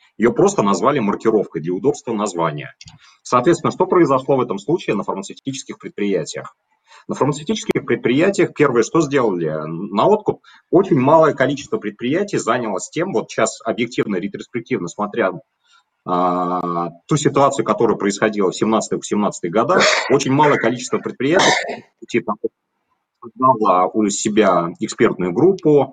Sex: male